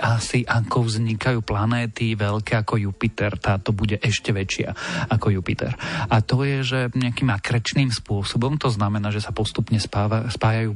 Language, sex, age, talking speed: Slovak, male, 40-59, 150 wpm